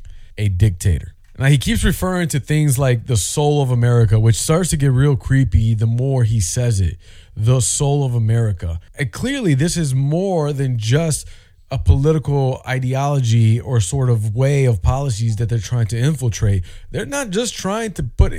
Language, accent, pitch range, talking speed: English, American, 105-155 Hz, 180 wpm